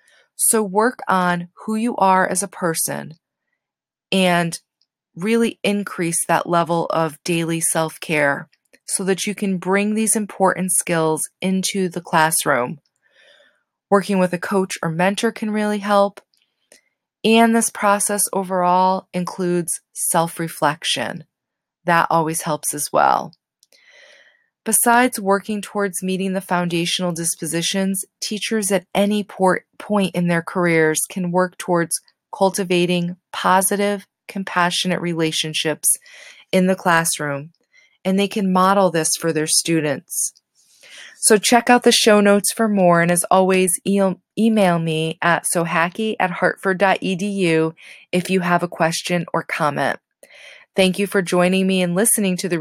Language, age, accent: English, 20-39, American